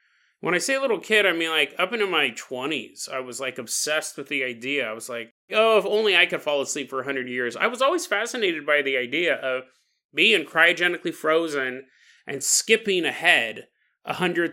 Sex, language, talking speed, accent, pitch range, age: male, English, 195 wpm, American, 135-210 Hz, 30-49